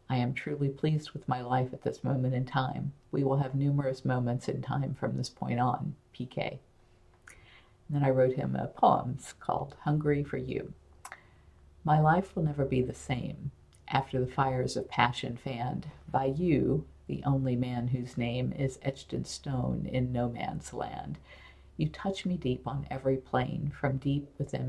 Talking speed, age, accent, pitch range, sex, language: 175 wpm, 50-69, American, 125-145 Hz, female, English